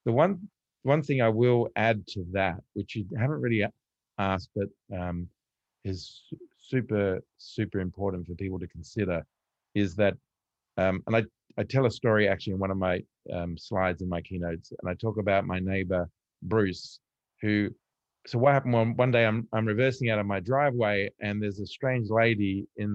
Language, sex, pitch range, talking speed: English, male, 95-120 Hz, 185 wpm